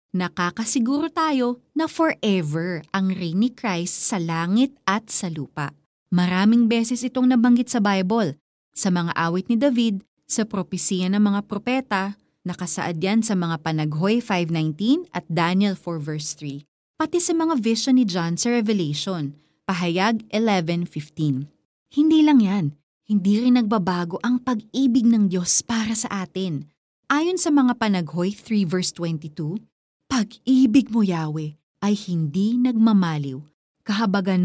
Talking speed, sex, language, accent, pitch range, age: 125 wpm, female, Filipino, native, 175-255 Hz, 20-39